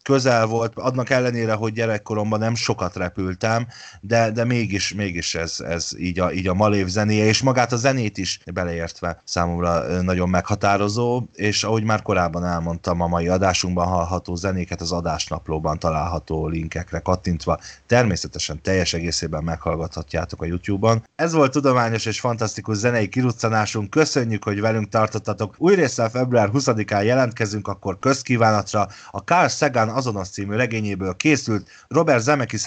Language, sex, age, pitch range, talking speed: Hungarian, male, 30-49, 90-120 Hz, 140 wpm